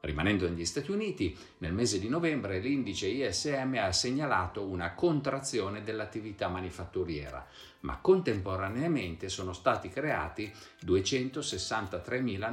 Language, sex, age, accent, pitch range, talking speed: Italian, male, 50-69, native, 90-135 Hz, 105 wpm